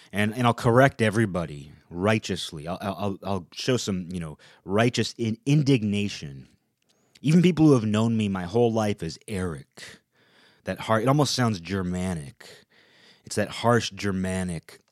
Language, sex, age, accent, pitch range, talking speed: English, male, 30-49, American, 90-115 Hz, 150 wpm